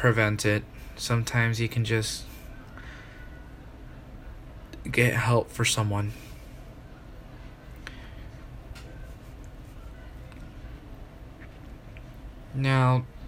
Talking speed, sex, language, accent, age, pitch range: 50 wpm, male, English, American, 20-39, 110-130 Hz